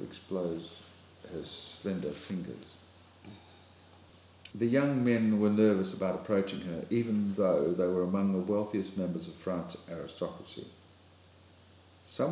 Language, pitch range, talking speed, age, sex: English, 90-110 Hz, 115 wpm, 50-69, male